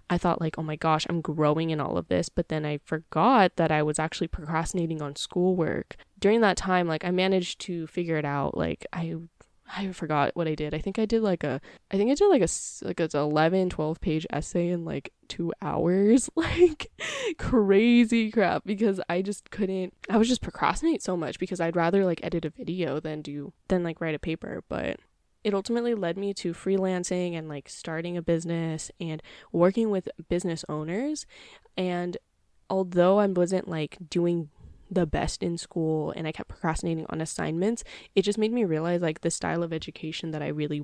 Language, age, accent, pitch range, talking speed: English, 10-29, American, 155-195 Hz, 195 wpm